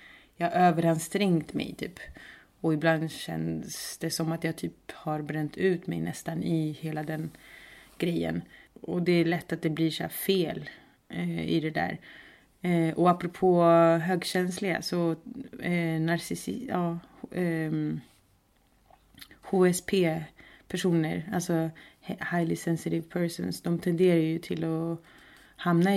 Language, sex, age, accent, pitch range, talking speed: English, female, 30-49, Swedish, 160-185 Hz, 130 wpm